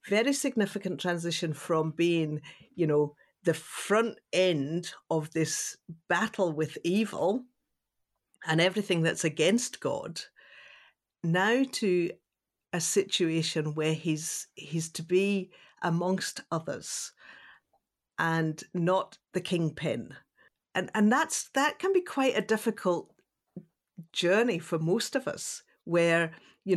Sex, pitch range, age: female, 155-190 Hz, 50-69